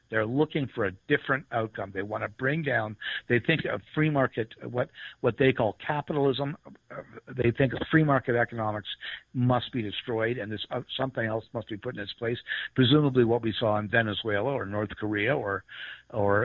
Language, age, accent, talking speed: English, 60-79, American, 190 wpm